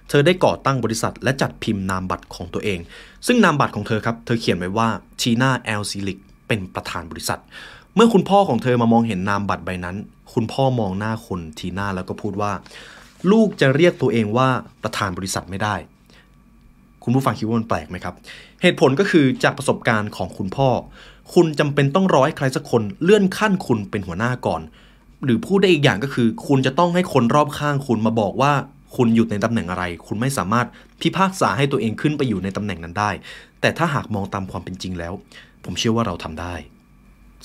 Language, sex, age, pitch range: Thai, male, 20-39, 100-135 Hz